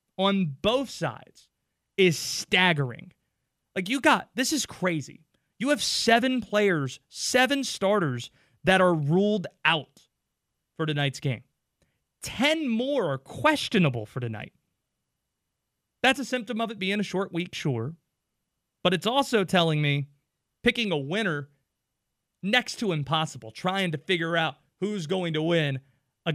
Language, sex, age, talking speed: English, male, 30-49, 135 wpm